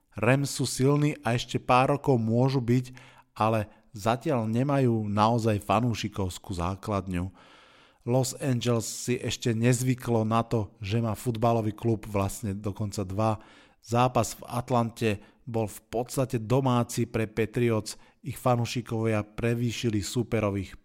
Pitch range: 110-130 Hz